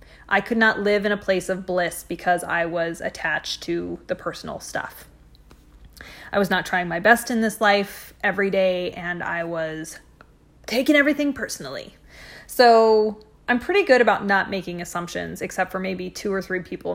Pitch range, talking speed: 180-230 Hz, 175 wpm